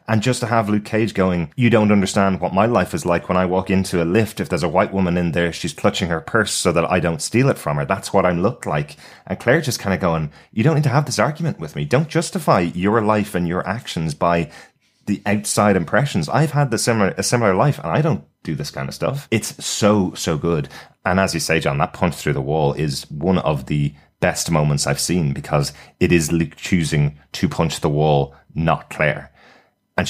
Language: English